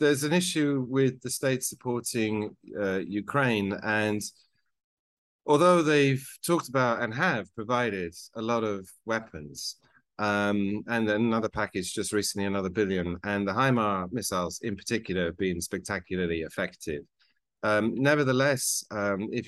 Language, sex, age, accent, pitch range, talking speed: English, male, 40-59, British, 95-125 Hz, 130 wpm